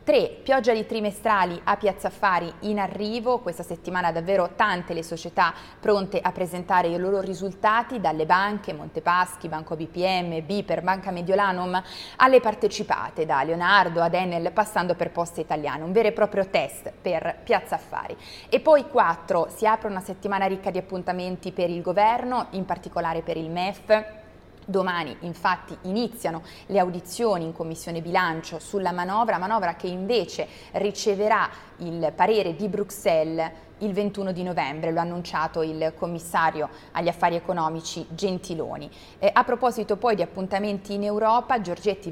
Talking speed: 150 wpm